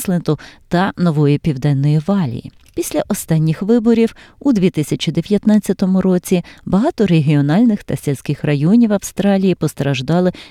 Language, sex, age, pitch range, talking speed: Ukrainian, female, 30-49, 145-195 Hz, 105 wpm